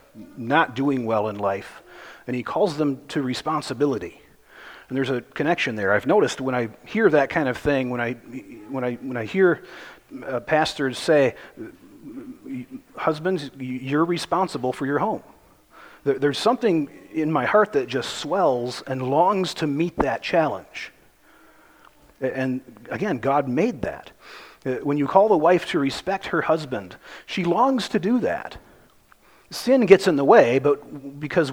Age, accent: 40-59, American